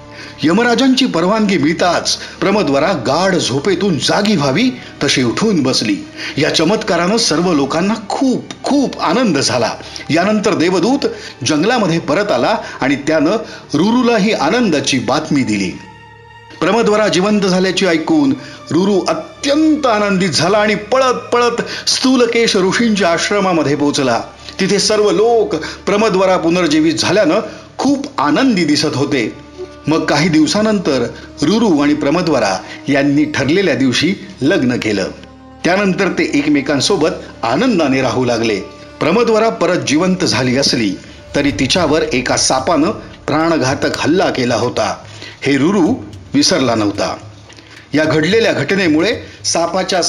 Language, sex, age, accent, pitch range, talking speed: Marathi, male, 50-69, native, 150-225 Hz, 110 wpm